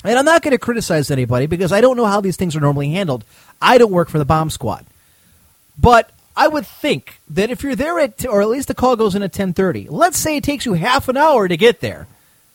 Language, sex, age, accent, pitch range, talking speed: English, male, 30-49, American, 135-215 Hz, 255 wpm